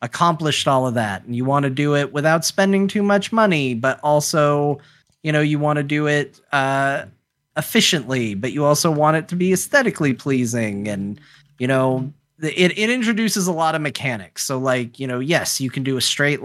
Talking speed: 200 wpm